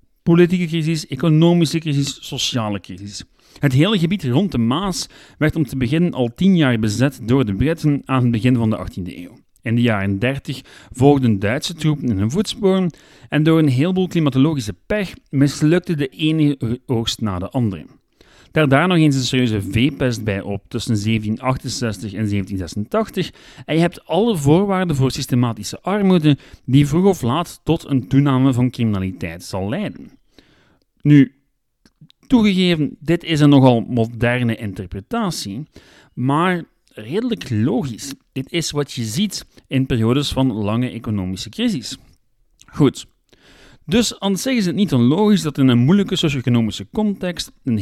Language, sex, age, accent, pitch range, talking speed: Dutch, male, 40-59, Dutch, 110-160 Hz, 155 wpm